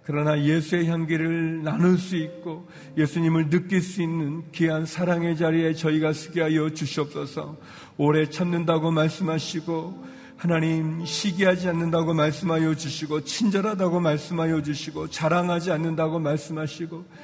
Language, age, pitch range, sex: Korean, 40-59, 155-170 Hz, male